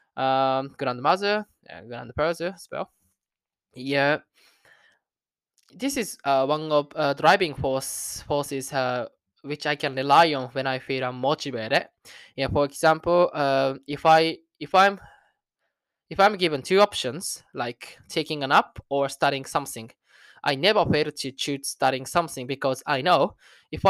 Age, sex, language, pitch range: 20-39, male, Japanese, 135-170 Hz